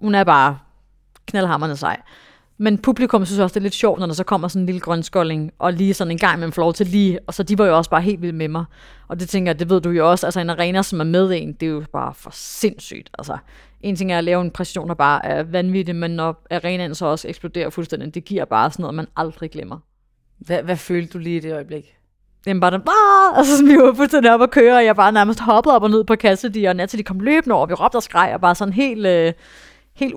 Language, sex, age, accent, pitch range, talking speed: Danish, female, 30-49, native, 175-215 Hz, 275 wpm